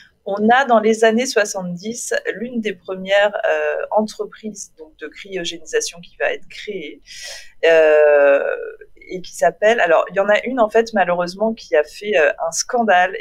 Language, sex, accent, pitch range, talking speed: French, female, French, 170-225 Hz, 170 wpm